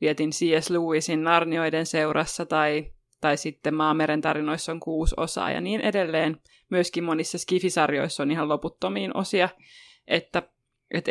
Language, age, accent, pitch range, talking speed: Finnish, 20-39, native, 155-180 Hz, 135 wpm